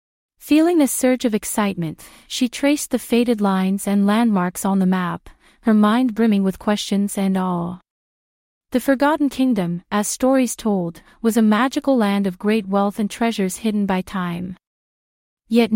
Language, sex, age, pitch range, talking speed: English, female, 30-49, 195-245 Hz, 155 wpm